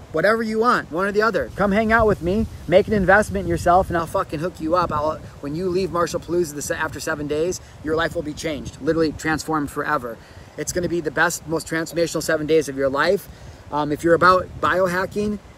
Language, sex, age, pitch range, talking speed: English, male, 30-49, 150-180 Hz, 215 wpm